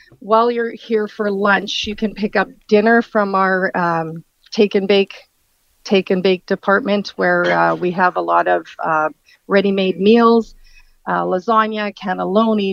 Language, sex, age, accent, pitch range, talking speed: English, female, 40-59, American, 185-210 Hz, 155 wpm